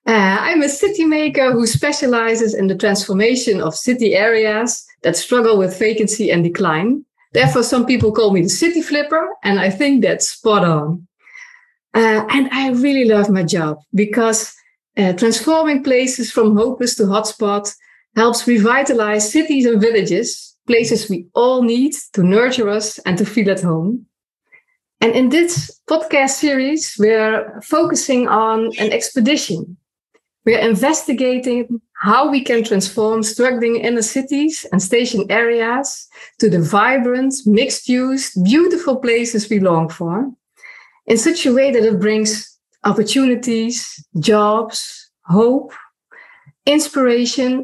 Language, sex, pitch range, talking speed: Dutch, female, 210-265 Hz, 135 wpm